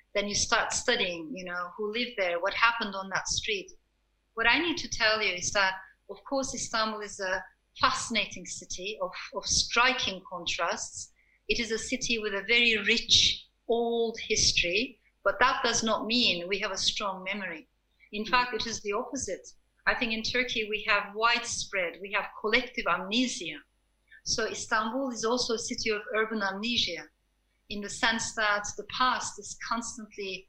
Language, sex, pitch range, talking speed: English, female, 200-240 Hz, 170 wpm